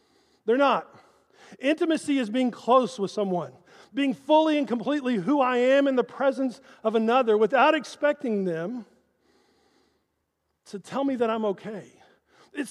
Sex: male